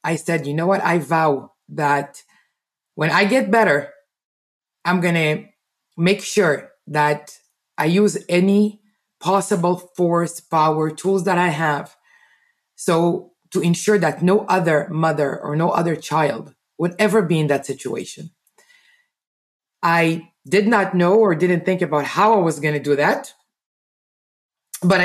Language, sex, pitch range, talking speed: English, female, 155-205 Hz, 145 wpm